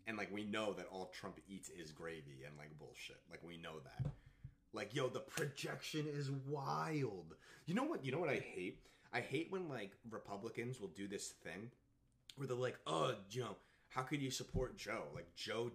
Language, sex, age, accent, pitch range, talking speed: English, male, 30-49, American, 95-130 Hz, 205 wpm